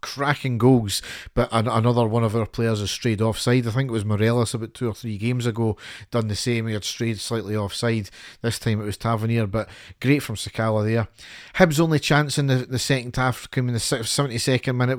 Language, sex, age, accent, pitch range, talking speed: English, male, 40-59, British, 110-130 Hz, 215 wpm